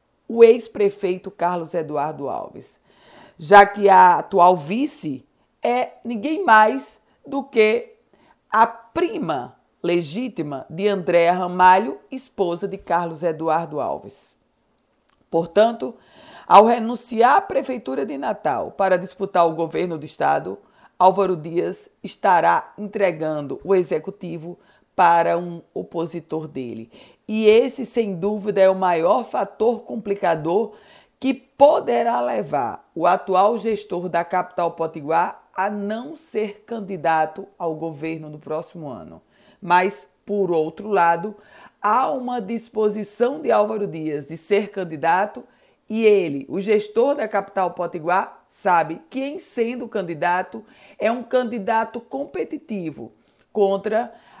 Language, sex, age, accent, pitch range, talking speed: Portuguese, female, 50-69, Brazilian, 170-225 Hz, 115 wpm